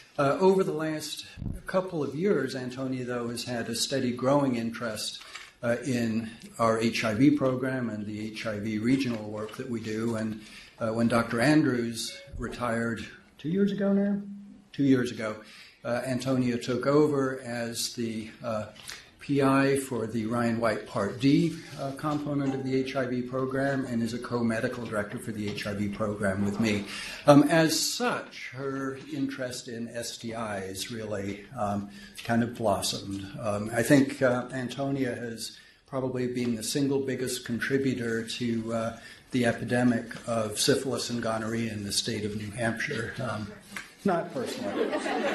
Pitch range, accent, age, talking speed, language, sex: 110-135 Hz, American, 60-79, 145 wpm, English, male